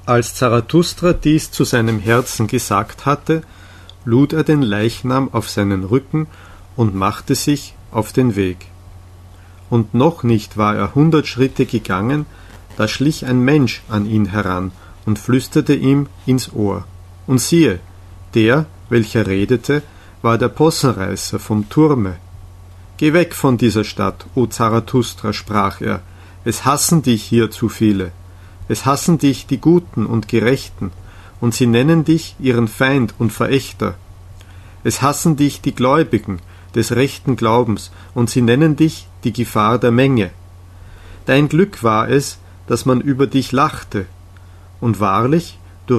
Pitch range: 95-135 Hz